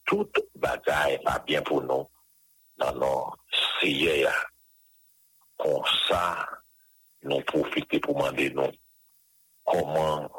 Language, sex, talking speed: English, male, 100 wpm